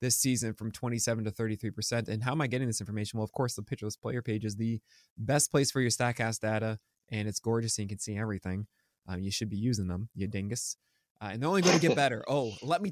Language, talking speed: English, 255 wpm